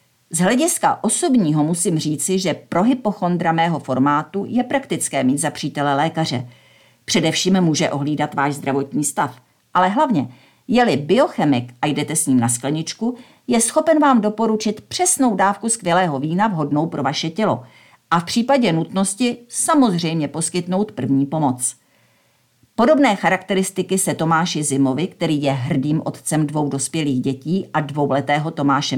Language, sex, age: Czech, female, 50-69